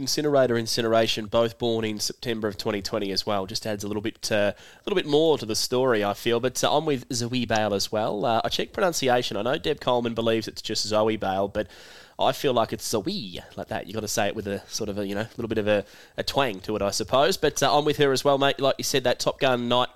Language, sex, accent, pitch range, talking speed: English, male, Australian, 110-125 Hz, 280 wpm